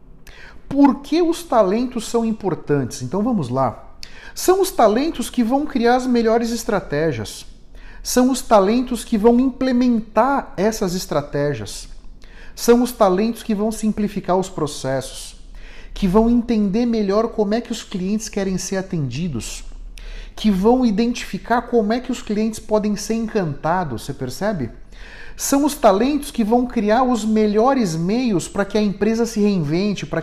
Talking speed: 145 wpm